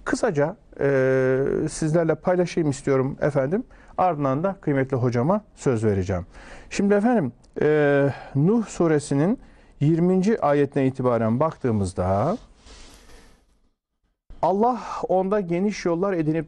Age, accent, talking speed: 50-69, native, 95 wpm